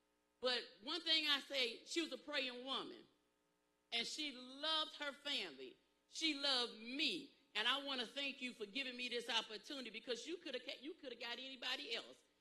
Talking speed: 180 wpm